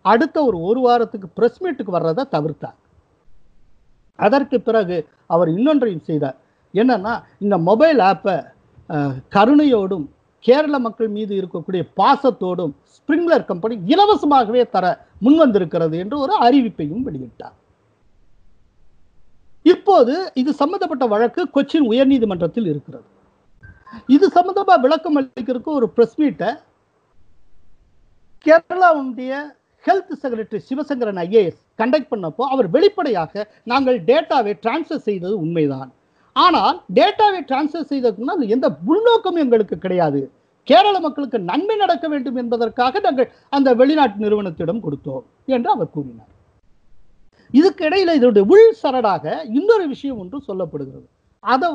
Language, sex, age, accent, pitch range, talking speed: Tamil, male, 50-69, native, 180-295 Hz, 35 wpm